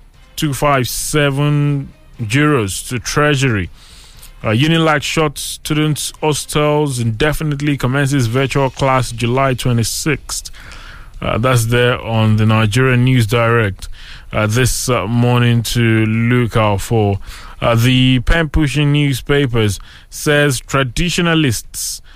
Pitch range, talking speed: 110-145 Hz, 115 wpm